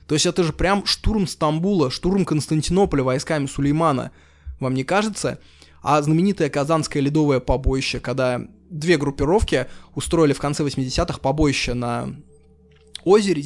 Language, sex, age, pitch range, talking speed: Russian, male, 20-39, 130-165 Hz, 130 wpm